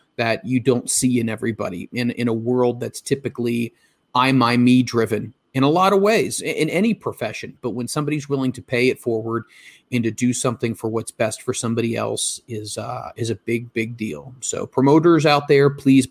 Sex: male